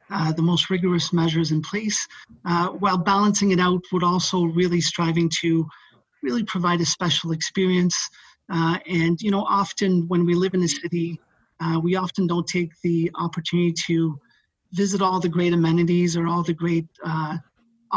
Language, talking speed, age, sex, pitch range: English, 170 wpm, 30-49, male, 165-180 Hz